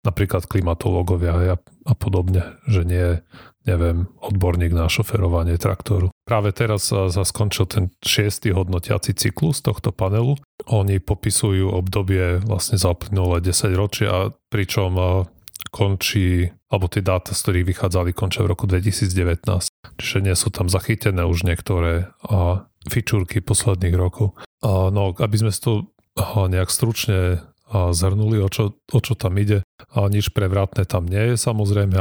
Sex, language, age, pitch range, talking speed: male, Slovak, 30-49, 90-110 Hz, 135 wpm